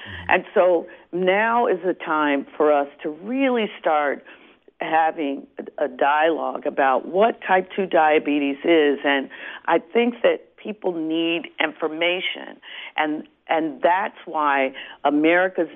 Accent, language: American, English